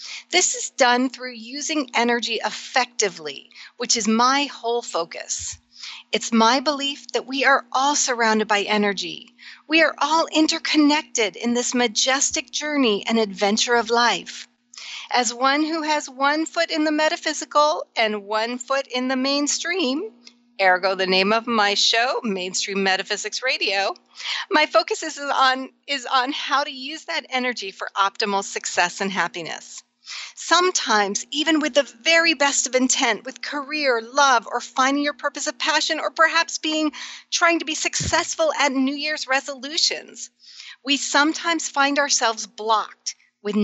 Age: 40-59